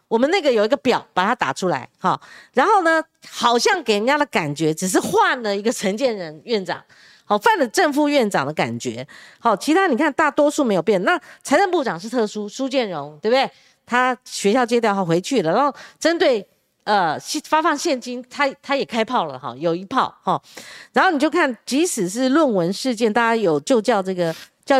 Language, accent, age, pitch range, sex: Chinese, American, 40-59, 195-280 Hz, female